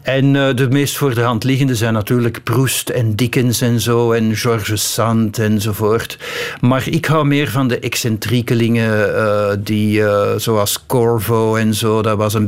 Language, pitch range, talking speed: Dutch, 110-145 Hz, 170 wpm